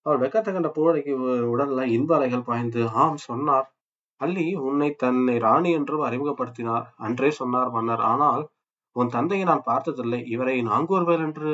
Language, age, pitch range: Tamil, 20-39, 120-150 Hz